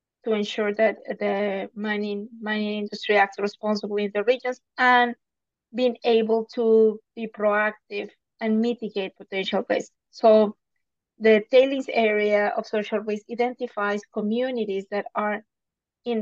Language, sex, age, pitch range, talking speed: English, female, 30-49, 205-235 Hz, 125 wpm